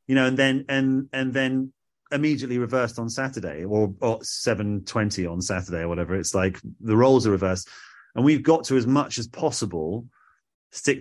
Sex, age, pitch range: male, 30-49, 100-125 Hz